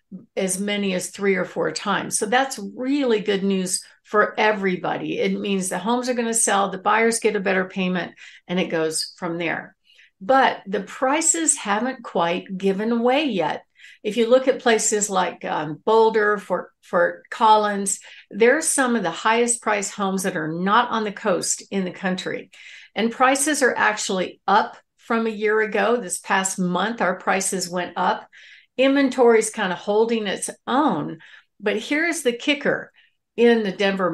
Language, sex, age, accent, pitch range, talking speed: English, female, 60-79, American, 185-235 Hz, 175 wpm